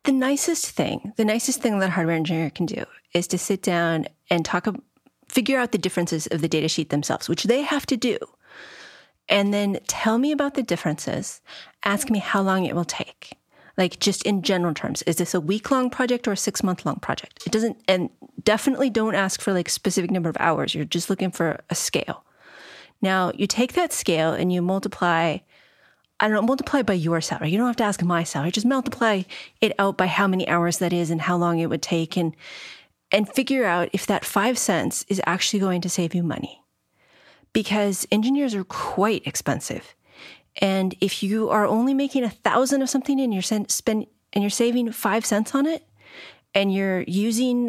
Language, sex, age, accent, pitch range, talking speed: English, female, 30-49, American, 175-240 Hz, 205 wpm